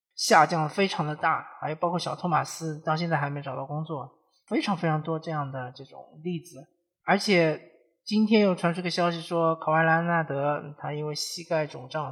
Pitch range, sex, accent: 150-185 Hz, male, native